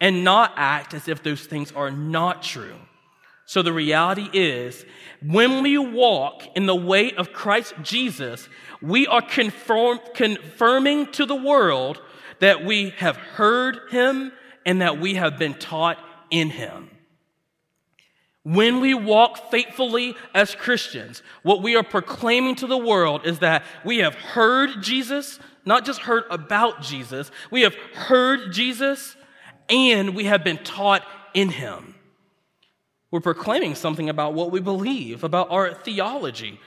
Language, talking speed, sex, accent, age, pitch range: English, 140 wpm, male, American, 40-59, 165-235 Hz